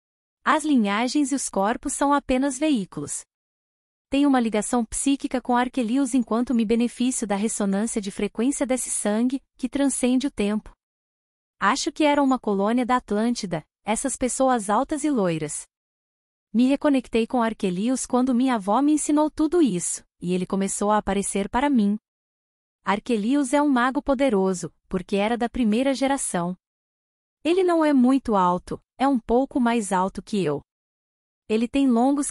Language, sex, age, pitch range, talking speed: English, female, 20-39, 210-275 Hz, 150 wpm